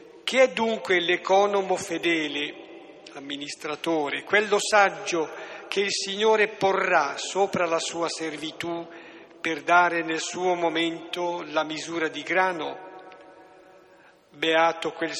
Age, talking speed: 50-69, 105 wpm